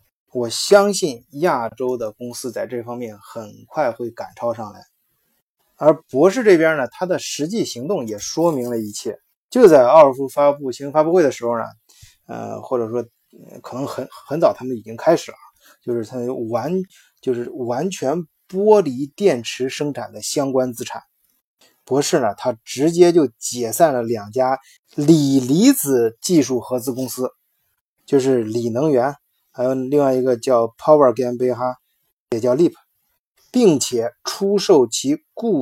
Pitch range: 120-155 Hz